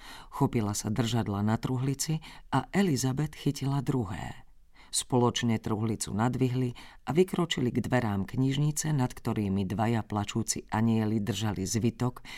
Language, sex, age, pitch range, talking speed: Slovak, female, 40-59, 105-130 Hz, 115 wpm